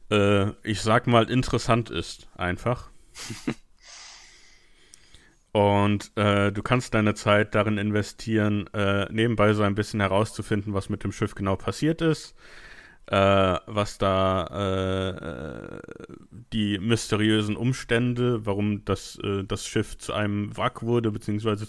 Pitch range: 100-115 Hz